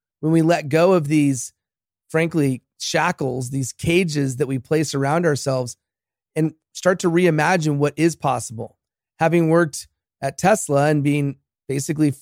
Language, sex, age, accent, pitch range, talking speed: English, male, 30-49, American, 140-165 Hz, 140 wpm